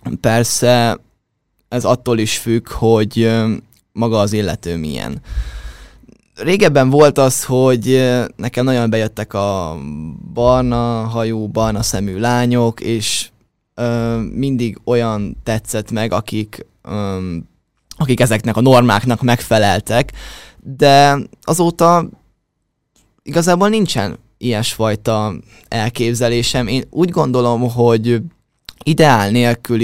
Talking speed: 95 wpm